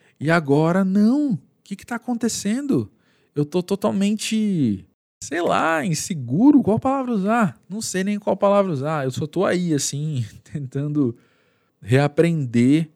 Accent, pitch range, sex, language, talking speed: Brazilian, 115-170 Hz, male, Portuguese, 140 wpm